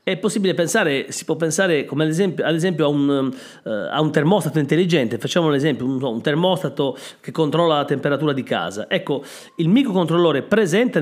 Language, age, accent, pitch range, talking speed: Italian, 40-59, native, 140-190 Hz, 185 wpm